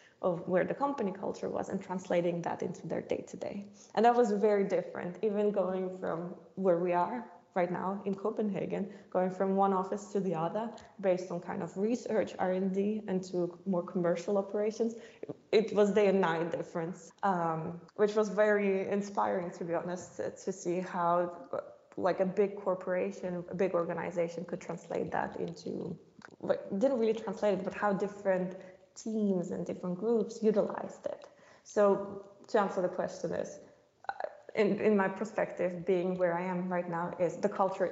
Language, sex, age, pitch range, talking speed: English, female, 20-39, 175-205 Hz, 165 wpm